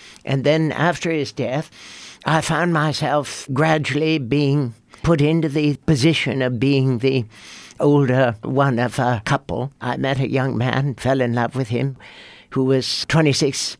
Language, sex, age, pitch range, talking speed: English, male, 60-79, 130-155 Hz, 150 wpm